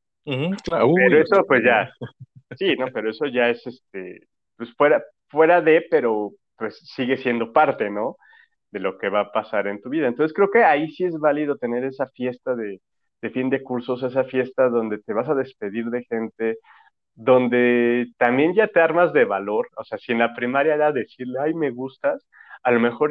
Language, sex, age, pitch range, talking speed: Spanish, male, 30-49, 120-150 Hz, 195 wpm